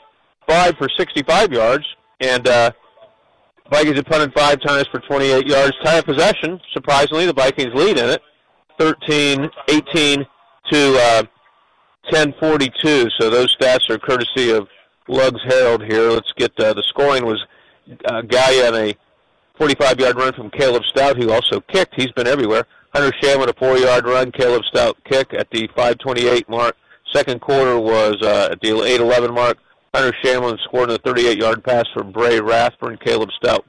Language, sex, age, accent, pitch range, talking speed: English, male, 40-59, American, 120-140 Hz, 165 wpm